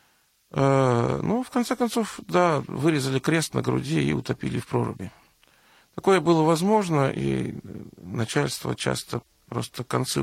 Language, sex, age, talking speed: Russian, male, 40-59, 125 wpm